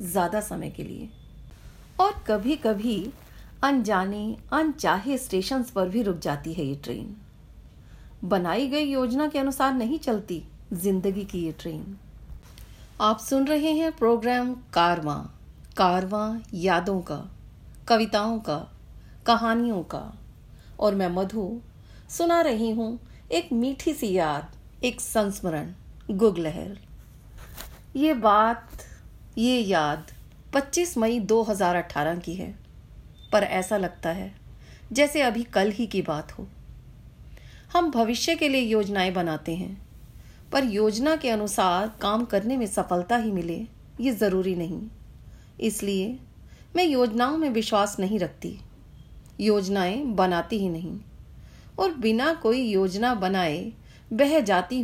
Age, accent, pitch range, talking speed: 40-59, Indian, 180-245 Hz, 120 wpm